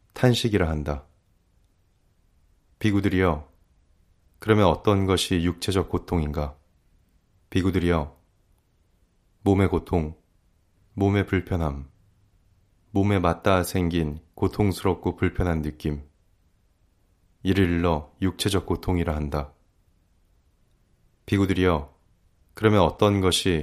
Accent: native